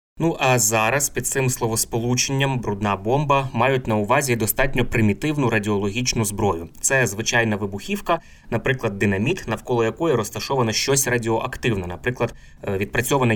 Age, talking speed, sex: 20-39, 120 wpm, male